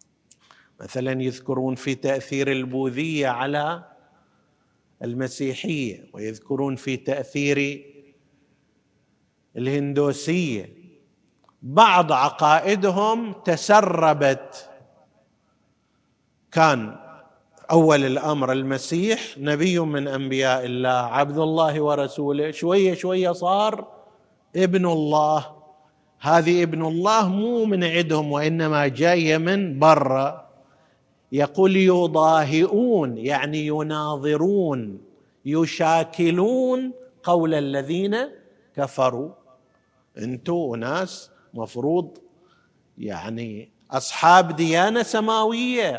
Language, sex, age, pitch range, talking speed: Arabic, male, 50-69, 140-185 Hz, 70 wpm